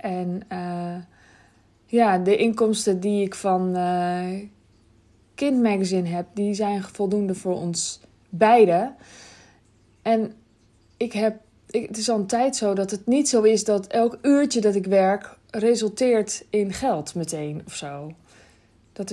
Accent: Dutch